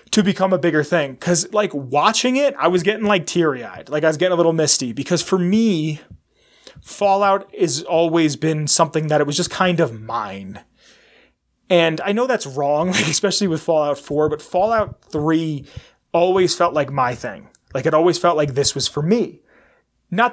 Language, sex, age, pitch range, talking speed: English, male, 30-49, 140-185 Hz, 185 wpm